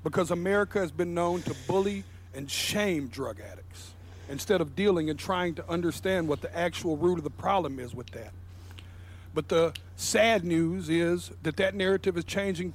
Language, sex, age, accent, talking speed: English, male, 50-69, American, 180 wpm